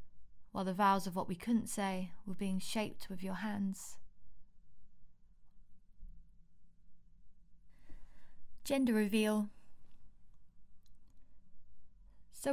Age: 20-39